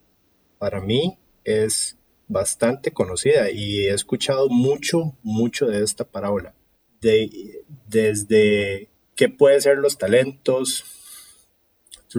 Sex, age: male, 30-49